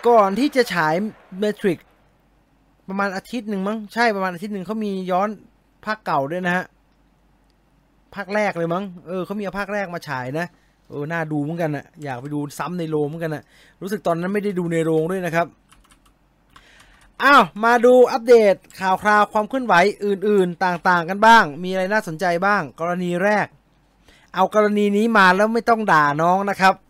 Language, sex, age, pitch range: English, male, 20-39, 165-210 Hz